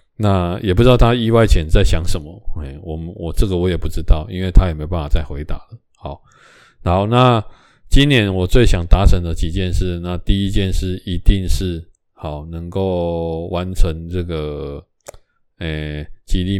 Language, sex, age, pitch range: Chinese, male, 20-39, 80-95 Hz